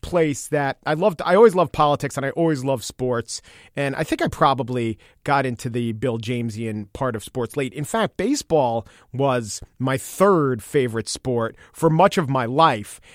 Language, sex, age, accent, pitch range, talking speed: English, male, 40-59, American, 120-155 Hz, 185 wpm